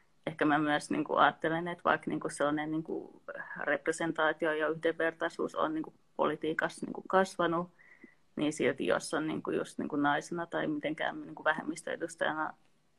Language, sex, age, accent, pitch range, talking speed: Finnish, female, 30-49, native, 155-170 Hz, 155 wpm